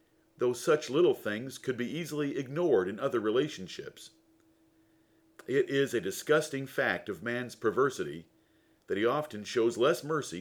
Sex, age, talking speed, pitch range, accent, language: male, 50-69, 145 wpm, 120-180 Hz, American, English